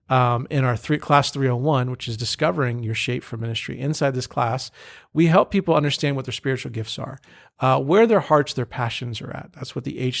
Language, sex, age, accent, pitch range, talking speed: English, male, 40-59, American, 125-145 Hz, 230 wpm